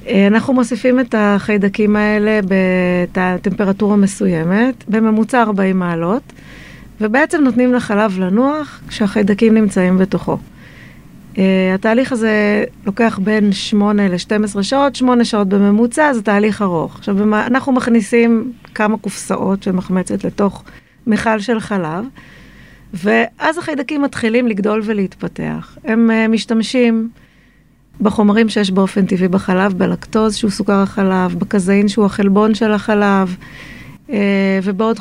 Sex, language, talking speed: female, Hebrew, 110 wpm